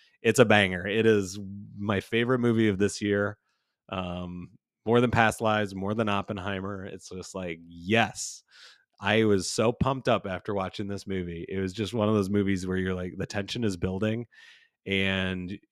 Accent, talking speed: American, 180 wpm